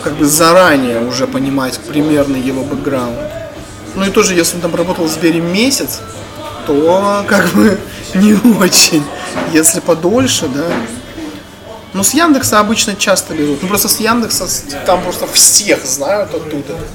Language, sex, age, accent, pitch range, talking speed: Russian, male, 20-39, native, 145-205 Hz, 145 wpm